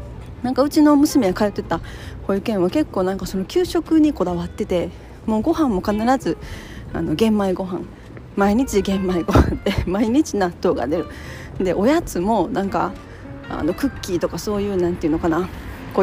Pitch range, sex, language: 190-290 Hz, female, Japanese